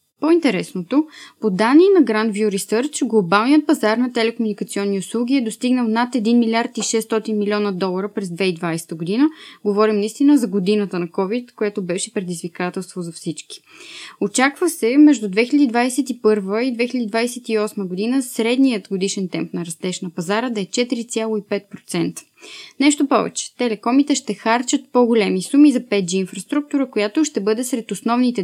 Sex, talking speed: female, 135 wpm